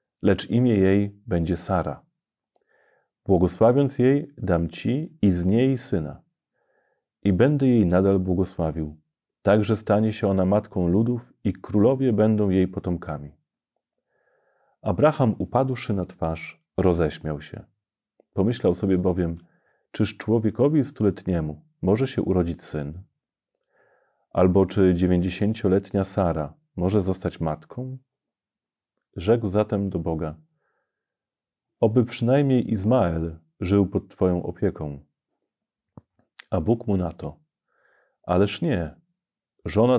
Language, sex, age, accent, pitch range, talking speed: Polish, male, 40-59, native, 90-115 Hz, 105 wpm